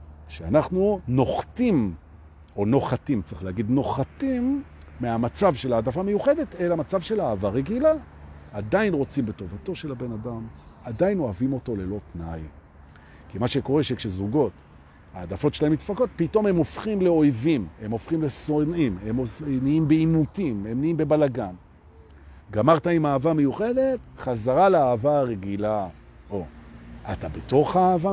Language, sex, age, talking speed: Hebrew, male, 50-69, 120 wpm